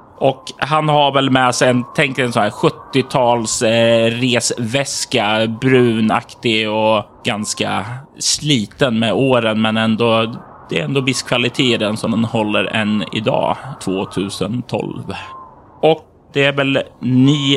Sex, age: male, 30-49